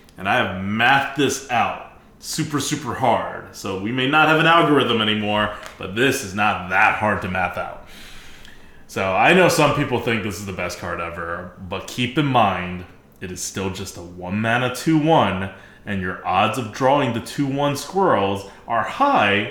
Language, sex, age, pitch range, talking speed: English, male, 20-39, 90-125 Hz, 185 wpm